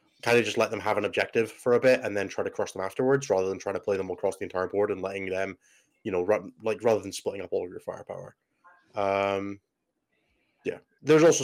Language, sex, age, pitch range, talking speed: English, male, 20-39, 100-145 Hz, 245 wpm